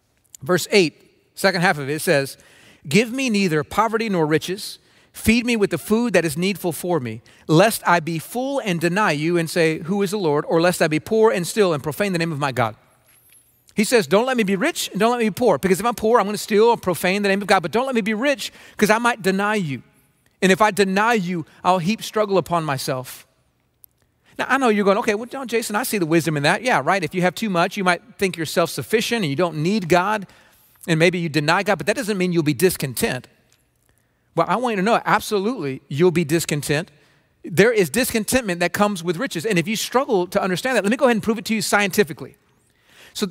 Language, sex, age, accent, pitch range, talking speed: English, male, 40-59, American, 160-215 Hz, 240 wpm